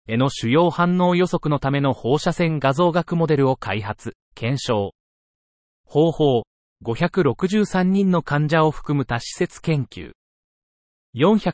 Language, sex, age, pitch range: Japanese, male, 30-49, 115-170 Hz